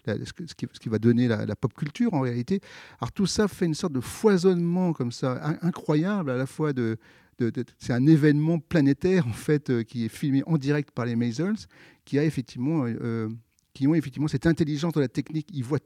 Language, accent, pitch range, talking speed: English, French, 120-155 Hz, 210 wpm